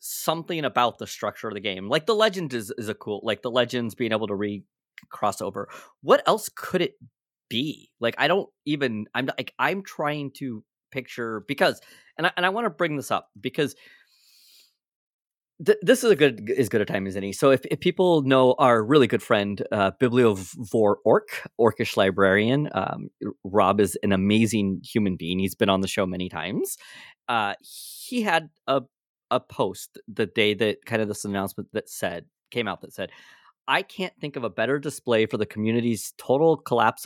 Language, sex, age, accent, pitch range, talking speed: English, male, 30-49, American, 105-150 Hz, 195 wpm